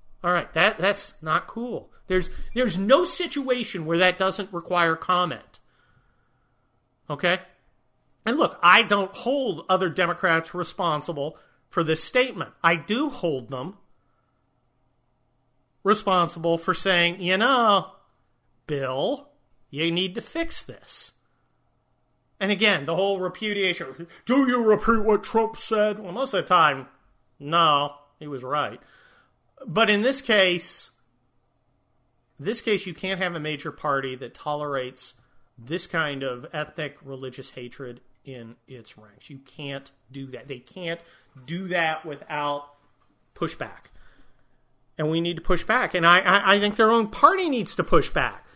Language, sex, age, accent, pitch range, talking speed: English, male, 40-59, American, 135-205 Hz, 140 wpm